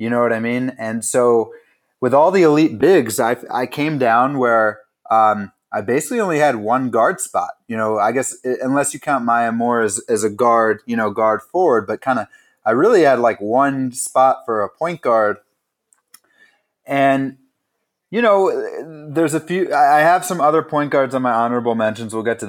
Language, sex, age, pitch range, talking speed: English, male, 30-49, 115-160 Hz, 195 wpm